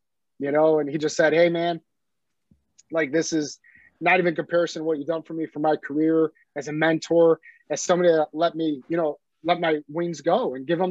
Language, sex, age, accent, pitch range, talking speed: English, male, 30-49, American, 155-195 Hz, 220 wpm